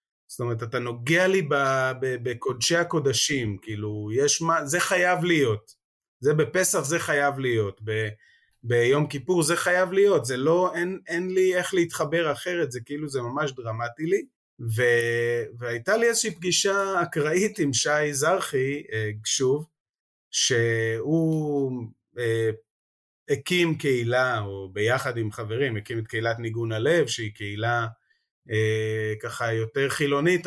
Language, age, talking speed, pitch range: Hebrew, 30-49, 130 wpm, 115-170 Hz